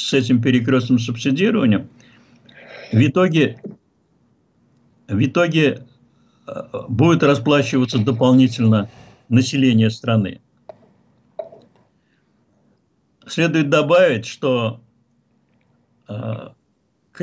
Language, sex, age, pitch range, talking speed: Russian, male, 60-79, 120-145 Hz, 60 wpm